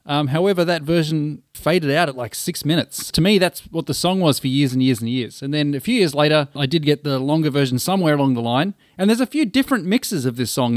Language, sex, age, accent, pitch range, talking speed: English, male, 30-49, Australian, 130-180 Hz, 265 wpm